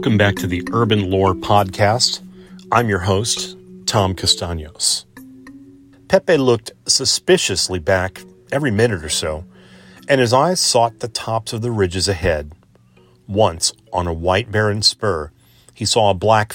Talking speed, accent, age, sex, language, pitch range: 145 wpm, American, 40-59, male, English, 95-120 Hz